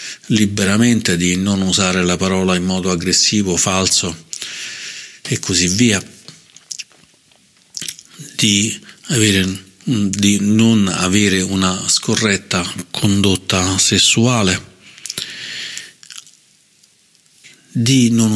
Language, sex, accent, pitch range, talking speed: Italian, male, native, 90-105 Hz, 80 wpm